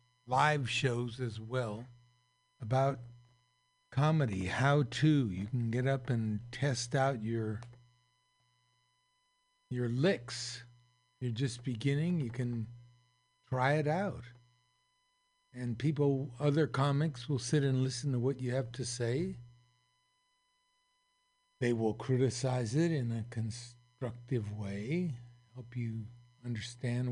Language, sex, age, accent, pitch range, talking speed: English, male, 60-79, American, 120-150 Hz, 110 wpm